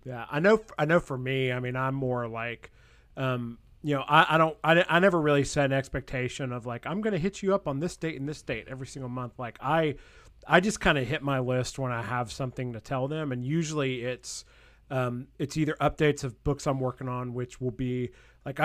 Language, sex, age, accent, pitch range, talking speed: English, male, 30-49, American, 125-150 Hz, 240 wpm